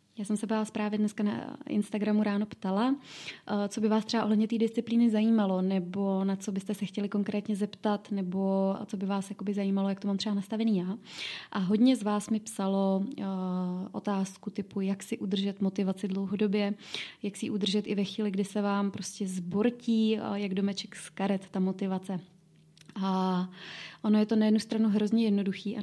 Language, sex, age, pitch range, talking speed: Czech, female, 20-39, 195-220 Hz, 185 wpm